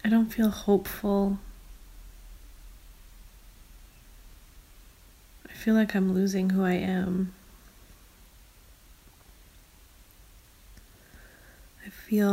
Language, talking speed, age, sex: English, 70 wpm, 20-39, female